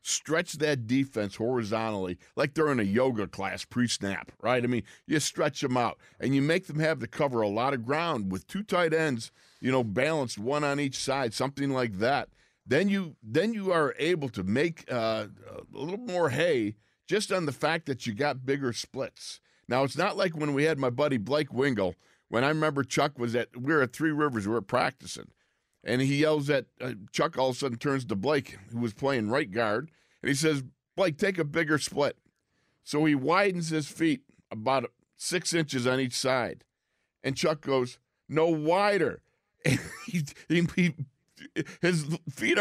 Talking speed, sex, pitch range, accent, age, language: 190 wpm, male, 125-170 Hz, American, 50-69, English